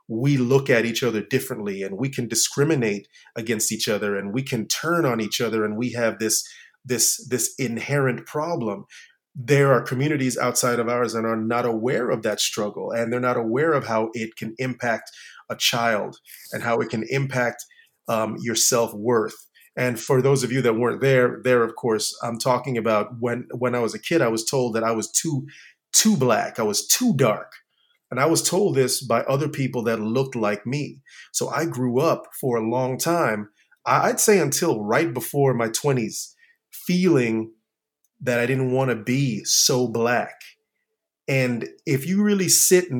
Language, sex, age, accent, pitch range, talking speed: English, male, 30-49, American, 115-135 Hz, 190 wpm